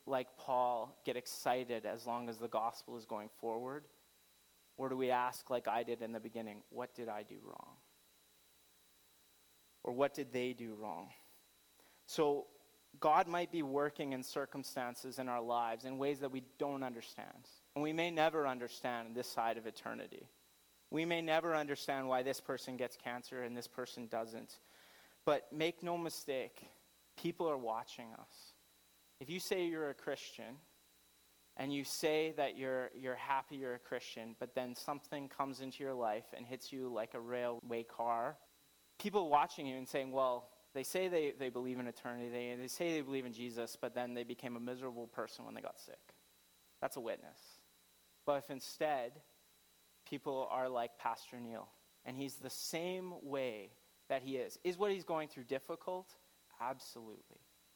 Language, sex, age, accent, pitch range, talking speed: English, male, 30-49, American, 115-140 Hz, 170 wpm